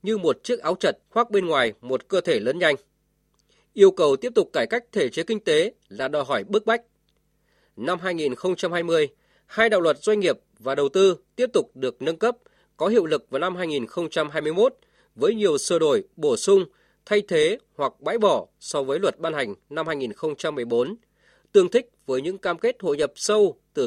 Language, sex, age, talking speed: Vietnamese, male, 20-39, 195 wpm